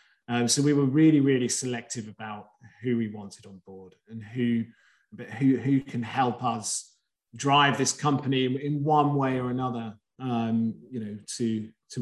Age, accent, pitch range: 30-49, British, 115-140 Hz